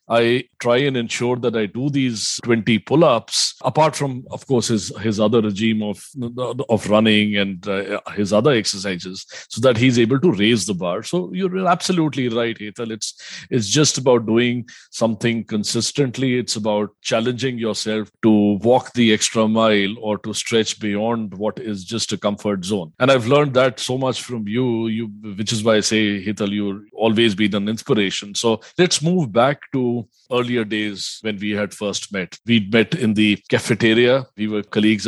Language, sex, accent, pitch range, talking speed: English, male, Indian, 105-125 Hz, 180 wpm